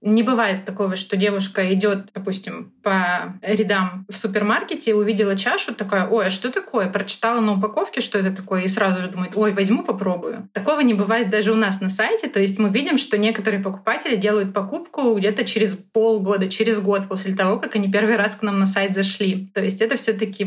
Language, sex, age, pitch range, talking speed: Russian, female, 20-39, 195-225 Hz, 200 wpm